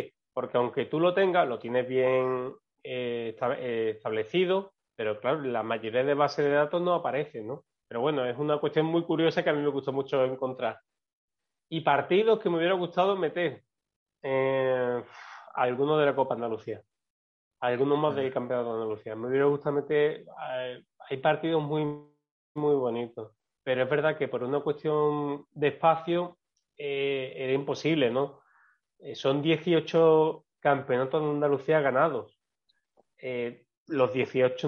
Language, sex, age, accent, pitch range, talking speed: Spanish, male, 30-49, Spanish, 130-160 Hz, 150 wpm